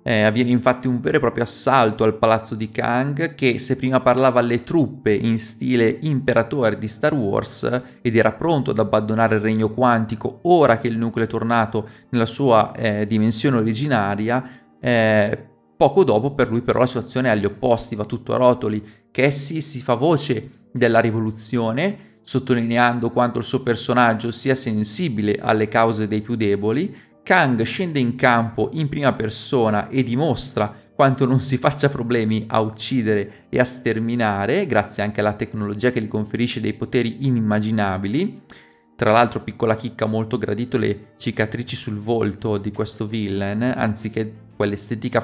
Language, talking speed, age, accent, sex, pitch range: Italian, 160 wpm, 30-49, native, male, 110-125 Hz